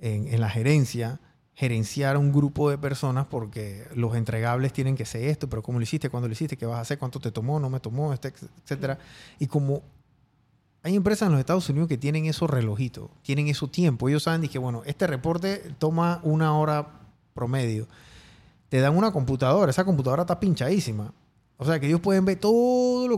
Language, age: Spanish, 30-49